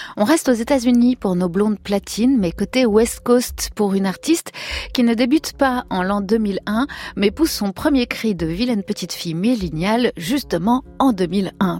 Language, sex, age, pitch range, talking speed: French, female, 30-49, 180-245 Hz, 185 wpm